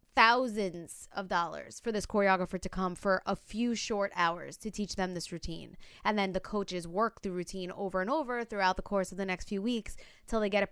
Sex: female